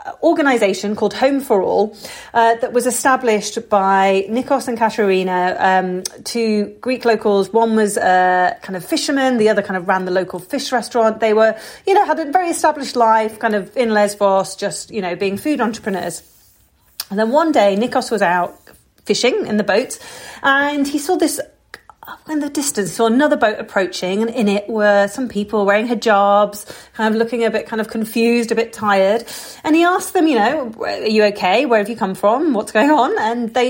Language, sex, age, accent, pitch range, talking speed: English, female, 40-59, British, 200-260 Hz, 200 wpm